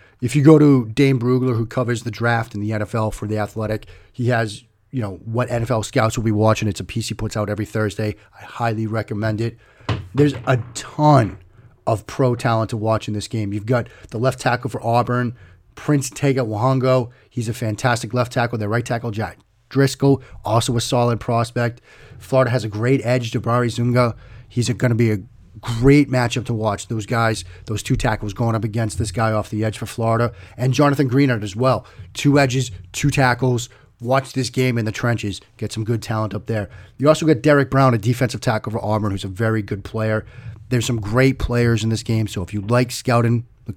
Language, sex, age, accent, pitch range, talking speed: English, male, 30-49, American, 110-125 Hz, 210 wpm